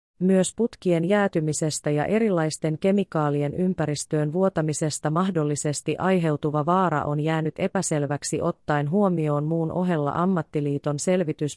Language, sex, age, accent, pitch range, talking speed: Finnish, female, 30-49, native, 150-185 Hz, 105 wpm